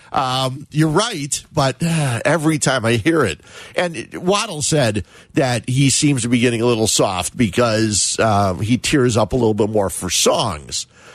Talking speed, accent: 185 wpm, American